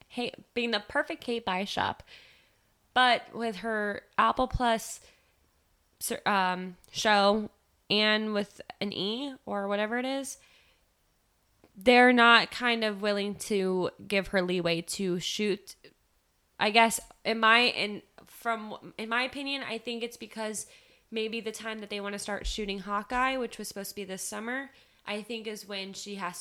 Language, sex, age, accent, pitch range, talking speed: English, female, 10-29, American, 195-235 Hz, 155 wpm